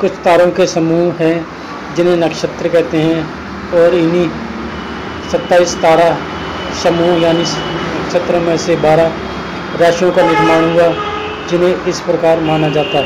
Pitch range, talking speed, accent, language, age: 165-185 Hz, 130 wpm, native, Hindi, 40-59